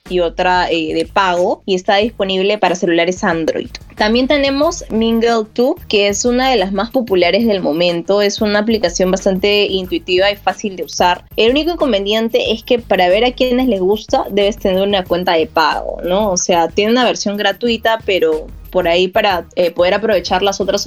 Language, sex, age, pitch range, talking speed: Spanish, female, 20-39, 185-235 Hz, 190 wpm